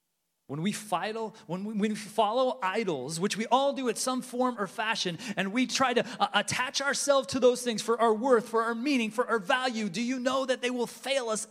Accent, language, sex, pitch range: American, English, male, 165-255 Hz